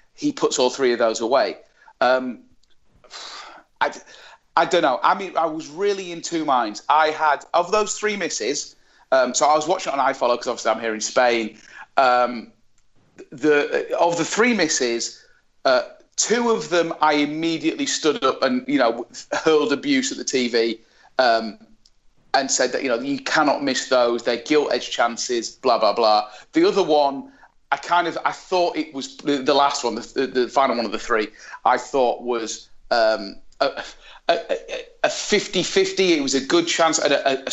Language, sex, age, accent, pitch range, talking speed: English, male, 40-59, British, 125-205 Hz, 185 wpm